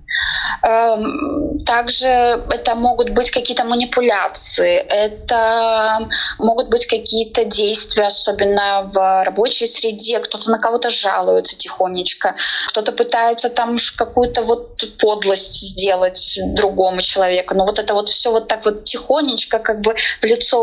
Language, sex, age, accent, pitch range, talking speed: Russian, female, 20-39, native, 215-275 Hz, 125 wpm